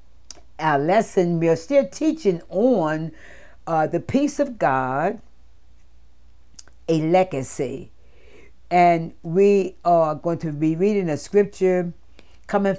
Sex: female